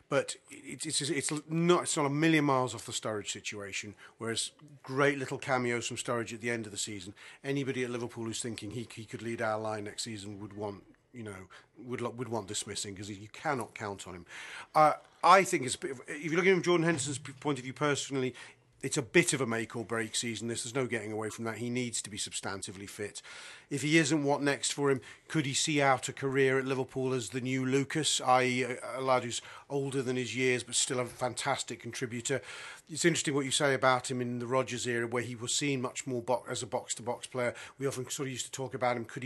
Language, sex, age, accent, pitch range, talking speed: English, male, 40-59, British, 115-135 Hz, 235 wpm